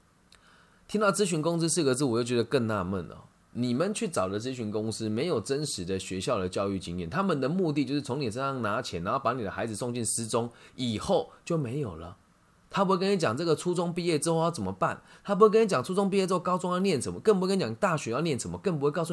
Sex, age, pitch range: male, 20-39, 110-170 Hz